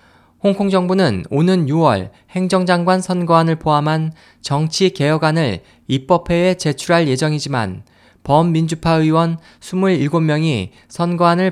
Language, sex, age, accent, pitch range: Korean, male, 20-39, native, 130-175 Hz